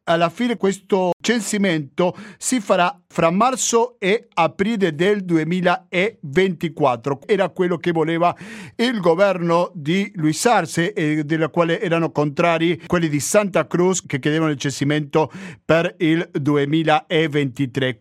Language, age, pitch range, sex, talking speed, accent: Italian, 50-69, 150-185 Hz, male, 125 wpm, native